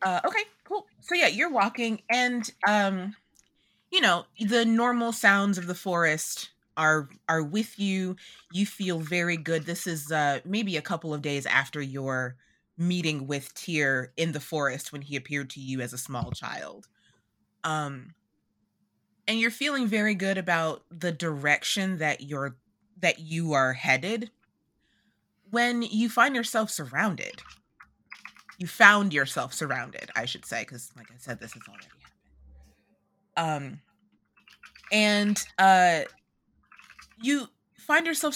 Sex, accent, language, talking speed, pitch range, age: female, American, English, 140 wpm, 145-210 Hz, 20-39